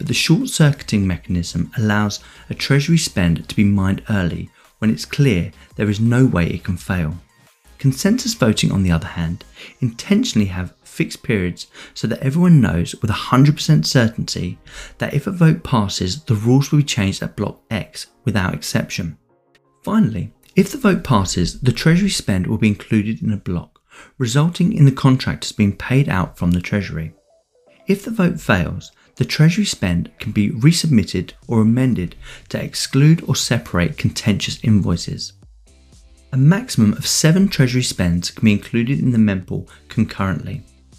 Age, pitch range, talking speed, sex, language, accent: 30-49, 90-145 Hz, 160 wpm, male, English, British